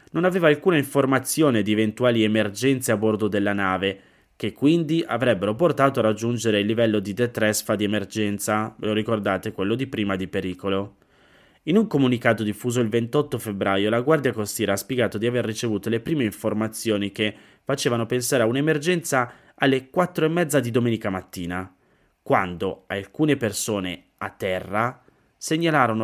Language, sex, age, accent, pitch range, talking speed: Italian, male, 20-39, native, 105-135 Hz, 155 wpm